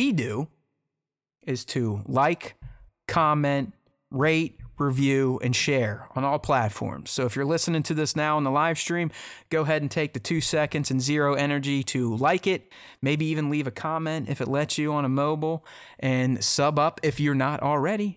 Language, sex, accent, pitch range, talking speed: English, male, American, 125-155 Hz, 180 wpm